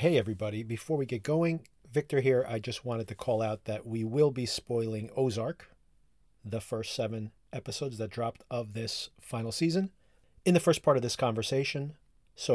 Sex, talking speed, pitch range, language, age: male, 180 wpm, 110-130 Hz, English, 40-59